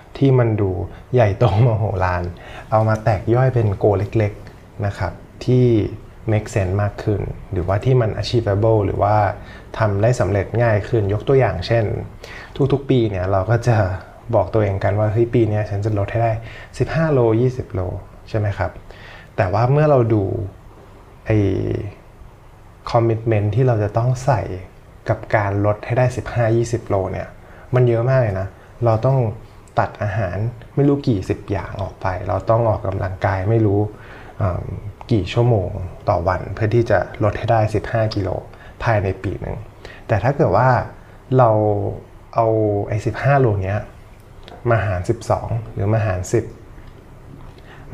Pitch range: 100-120 Hz